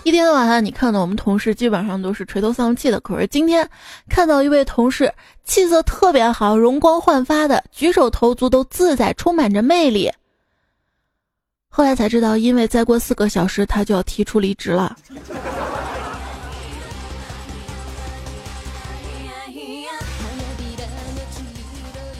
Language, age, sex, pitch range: Chinese, 20-39, female, 200-295 Hz